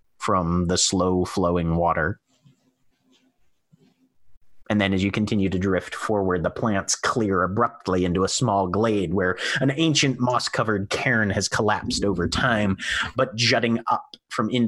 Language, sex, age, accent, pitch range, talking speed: English, male, 30-49, American, 90-115 Hz, 140 wpm